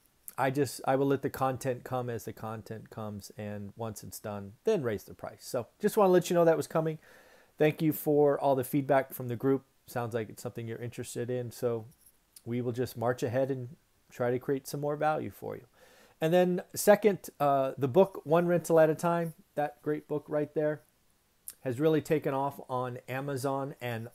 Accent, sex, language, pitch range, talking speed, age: American, male, English, 115-145 Hz, 210 wpm, 40-59